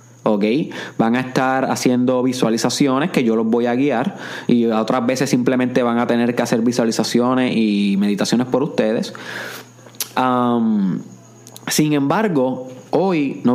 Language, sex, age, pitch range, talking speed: Spanish, male, 30-49, 110-145 Hz, 130 wpm